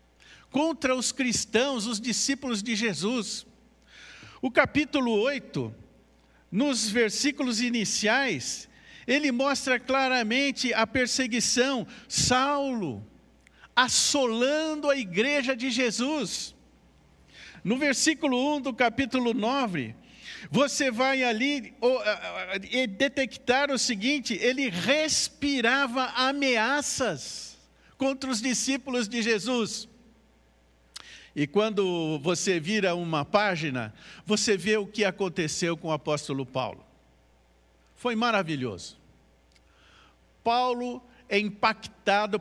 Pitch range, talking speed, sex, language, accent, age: 180-260 Hz, 90 wpm, male, Portuguese, Brazilian, 50-69